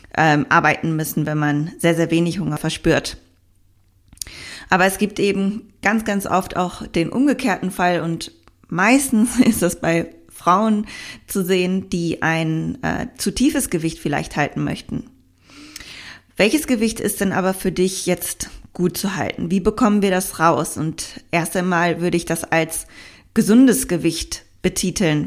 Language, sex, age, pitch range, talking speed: German, female, 20-39, 165-200 Hz, 150 wpm